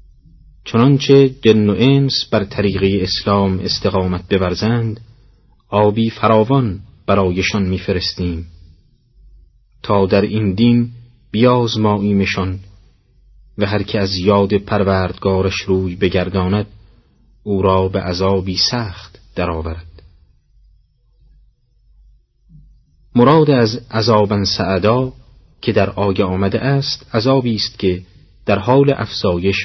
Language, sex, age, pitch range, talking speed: Persian, male, 30-49, 95-125 Hz, 95 wpm